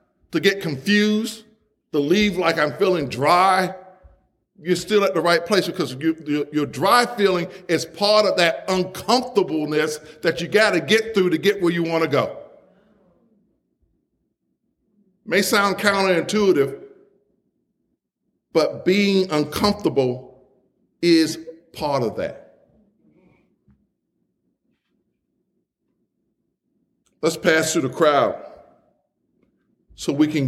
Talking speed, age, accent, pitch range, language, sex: 115 wpm, 50-69, American, 135-190 Hz, English, male